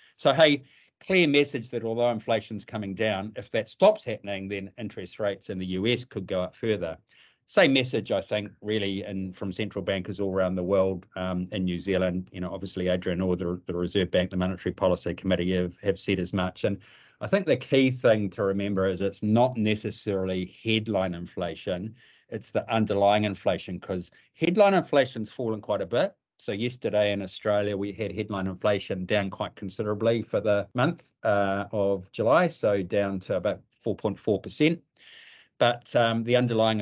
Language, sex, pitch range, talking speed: English, male, 95-110 Hz, 180 wpm